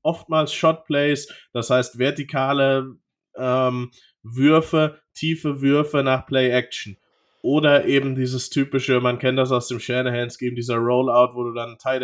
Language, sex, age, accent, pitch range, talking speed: German, male, 20-39, German, 125-145 Hz, 145 wpm